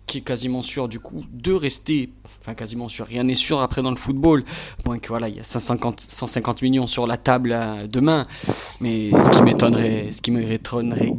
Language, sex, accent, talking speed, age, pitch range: French, male, French, 205 wpm, 20-39, 115-140 Hz